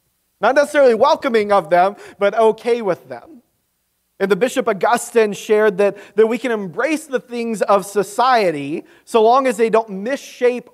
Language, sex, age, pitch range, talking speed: English, male, 30-49, 190-245 Hz, 160 wpm